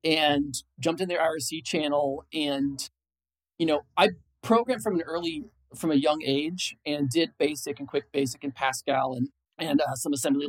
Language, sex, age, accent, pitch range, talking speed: English, male, 40-59, American, 130-160 Hz, 175 wpm